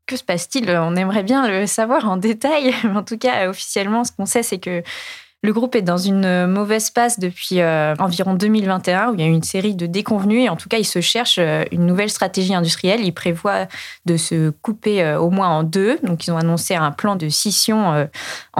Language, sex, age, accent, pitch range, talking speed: French, female, 20-39, French, 165-205 Hz, 230 wpm